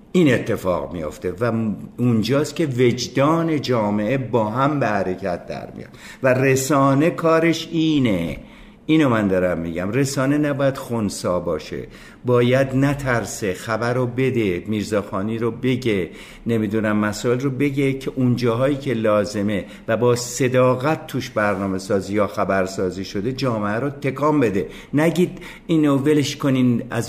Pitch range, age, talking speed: 110-140 Hz, 50-69, 135 wpm